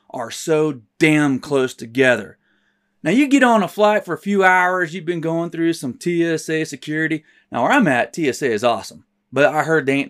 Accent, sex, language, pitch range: American, male, English, 150-210 Hz